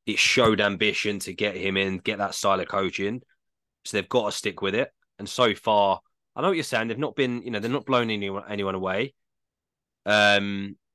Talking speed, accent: 215 wpm, British